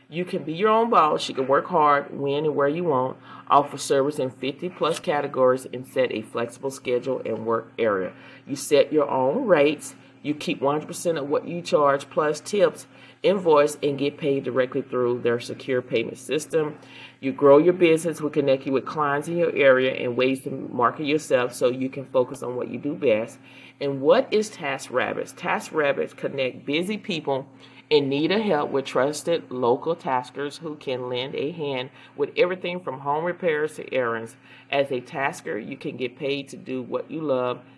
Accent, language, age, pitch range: American, English, 40-59, 130-155 Hz